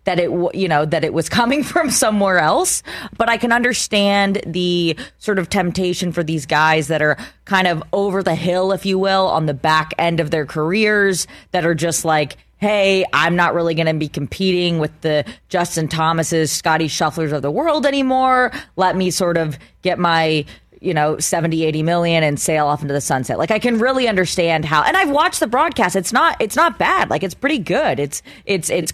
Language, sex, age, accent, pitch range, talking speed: English, female, 20-39, American, 155-200 Hz, 210 wpm